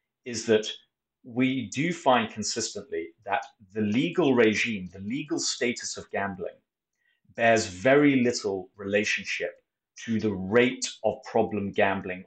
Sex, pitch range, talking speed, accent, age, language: male, 95-130 Hz, 120 wpm, British, 30-49, English